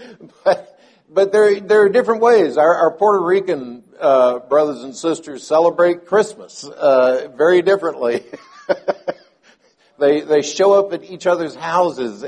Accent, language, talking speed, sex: American, English, 130 wpm, male